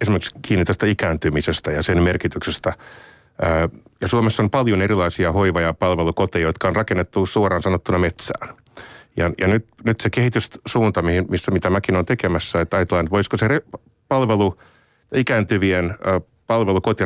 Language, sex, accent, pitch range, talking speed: Finnish, male, native, 90-115 Hz, 135 wpm